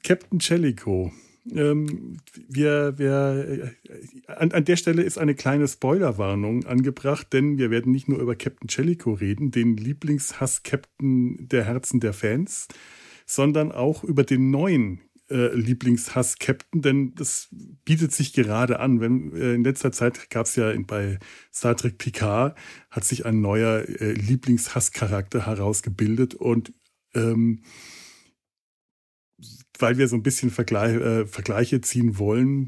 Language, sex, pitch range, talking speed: German, male, 110-130 Hz, 135 wpm